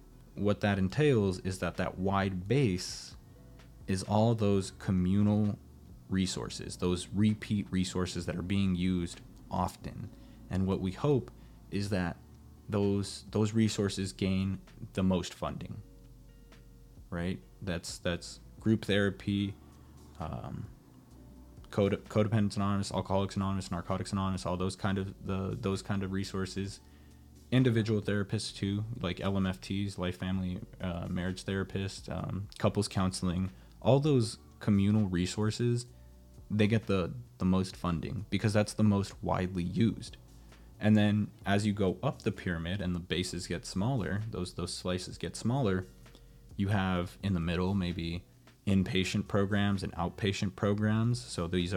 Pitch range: 90-105 Hz